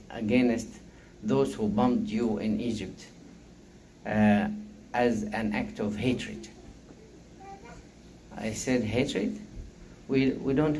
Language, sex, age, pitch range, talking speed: English, male, 50-69, 115-150 Hz, 105 wpm